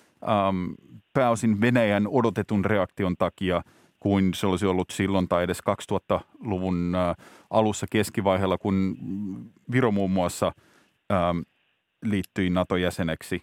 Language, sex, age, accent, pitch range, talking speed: Finnish, male, 30-49, native, 100-125 Hz, 105 wpm